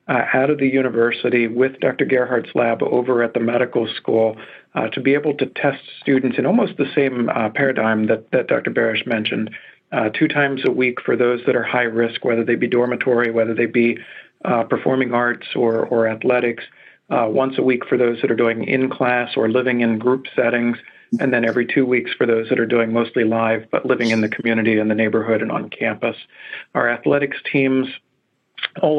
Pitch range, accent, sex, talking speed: 115-130 Hz, American, male, 205 wpm